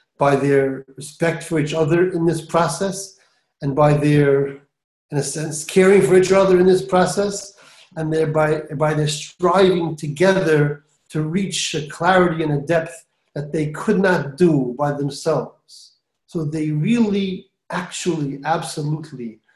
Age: 40-59